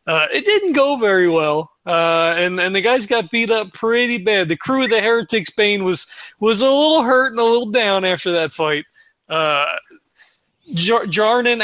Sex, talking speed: male, 185 wpm